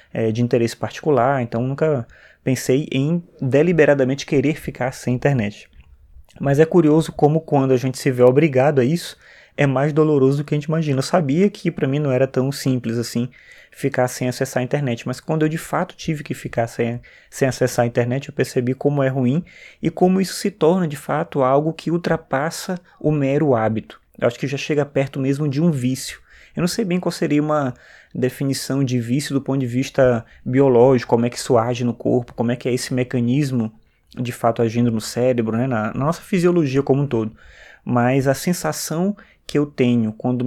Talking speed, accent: 200 wpm, Brazilian